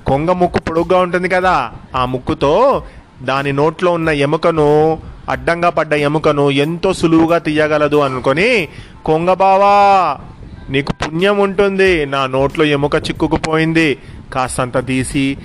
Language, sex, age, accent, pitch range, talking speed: Telugu, male, 30-49, native, 135-170 Hz, 115 wpm